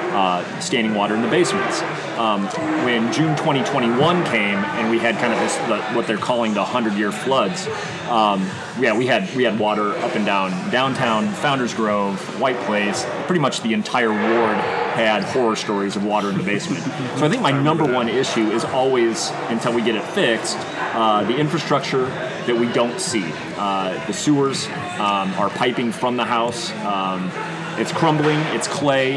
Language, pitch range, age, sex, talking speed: English, 110-130 Hz, 30-49, male, 175 wpm